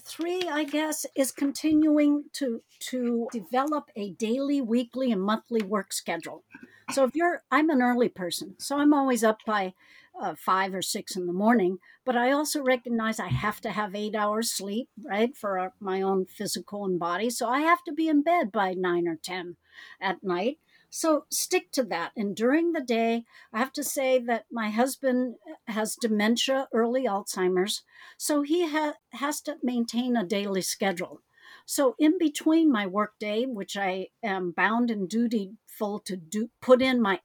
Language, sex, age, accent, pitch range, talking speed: English, female, 60-79, American, 210-290 Hz, 180 wpm